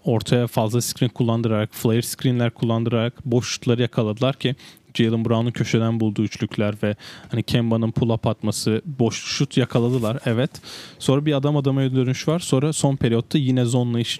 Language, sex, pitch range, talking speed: Turkish, male, 115-130 Hz, 155 wpm